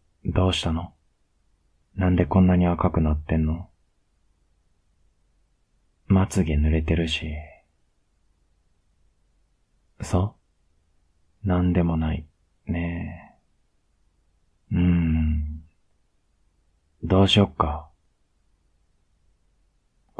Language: Japanese